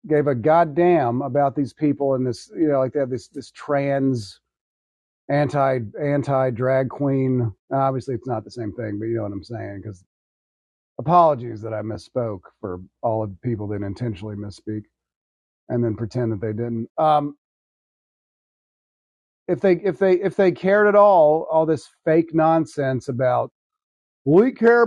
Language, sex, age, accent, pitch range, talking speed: English, male, 40-59, American, 120-160 Hz, 165 wpm